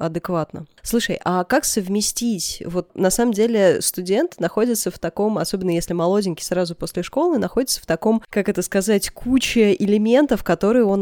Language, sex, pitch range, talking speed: Russian, female, 165-205 Hz, 160 wpm